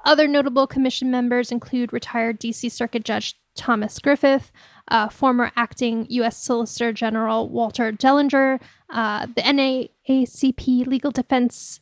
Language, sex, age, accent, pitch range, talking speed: English, female, 10-29, American, 230-265 Hz, 120 wpm